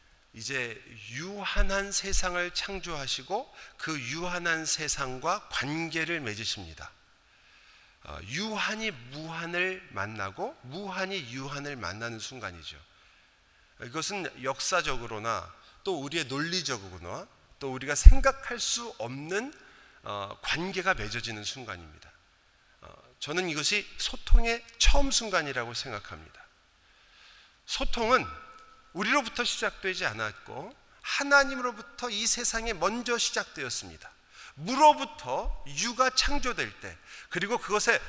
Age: 40-59